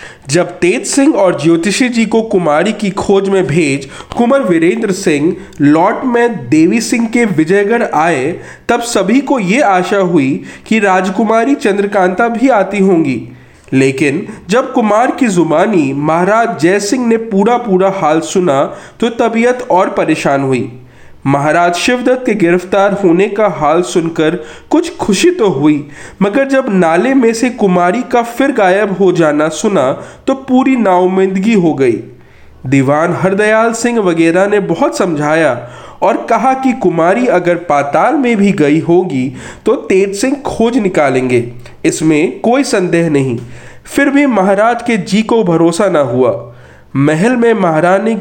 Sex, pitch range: male, 165-230 Hz